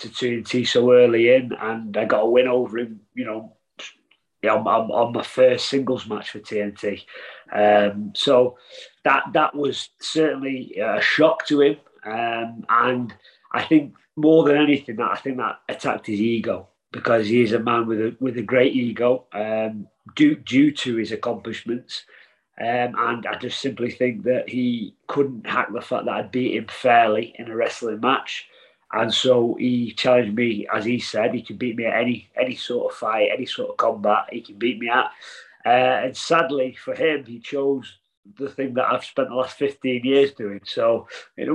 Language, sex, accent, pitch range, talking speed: English, male, British, 115-140 Hz, 190 wpm